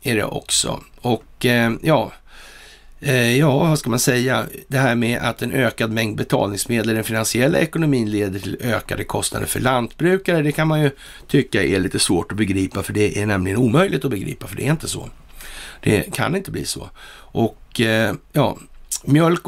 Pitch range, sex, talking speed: 110-135 Hz, male, 175 wpm